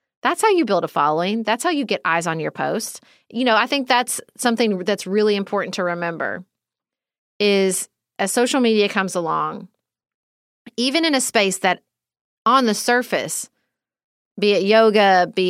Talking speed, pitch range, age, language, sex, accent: 165 wpm, 175-215 Hz, 30-49, English, female, American